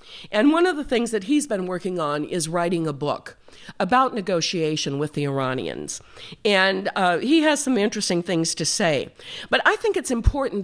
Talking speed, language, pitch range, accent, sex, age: 185 wpm, English, 155-230 Hz, American, female, 50-69